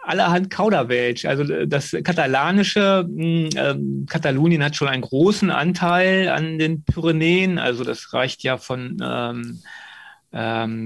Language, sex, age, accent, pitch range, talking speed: German, male, 30-49, German, 135-170 Hz, 120 wpm